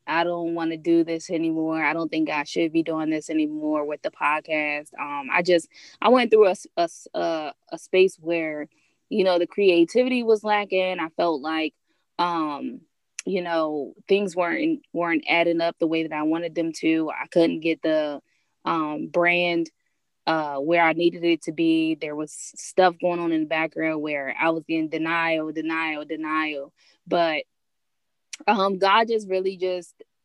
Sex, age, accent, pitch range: female, 20-39, American, 160-190 Hz